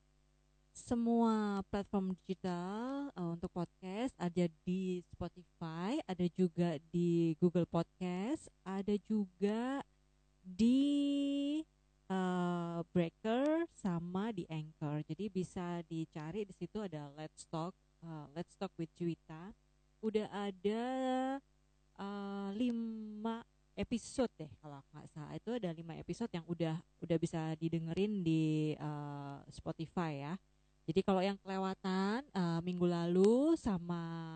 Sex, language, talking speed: female, Indonesian, 115 wpm